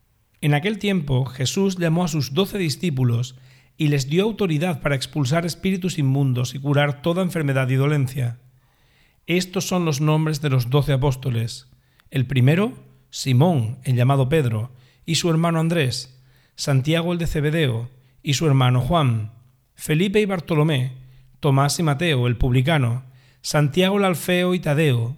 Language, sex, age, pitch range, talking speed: Spanish, male, 40-59, 130-160 Hz, 150 wpm